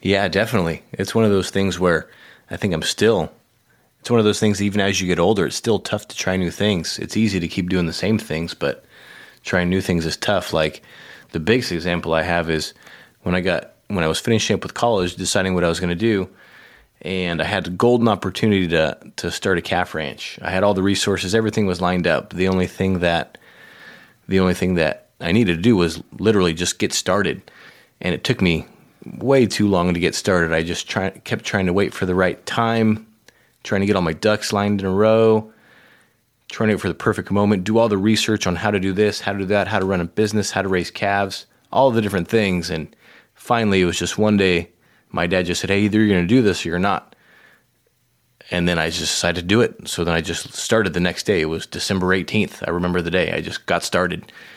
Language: English